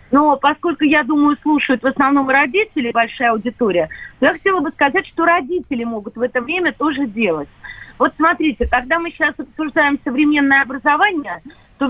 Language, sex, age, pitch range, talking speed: Russian, female, 30-49, 250-310 Hz, 155 wpm